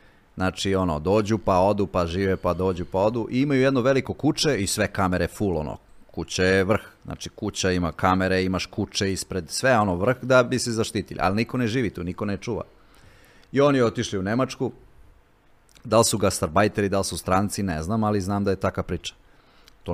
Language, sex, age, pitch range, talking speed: Croatian, male, 30-49, 95-120 Hz, 200 wpm